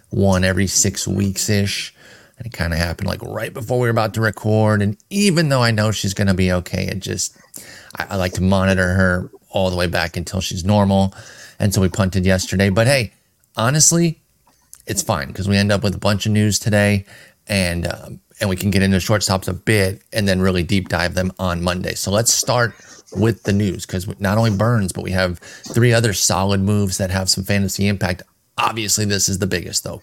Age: 30-49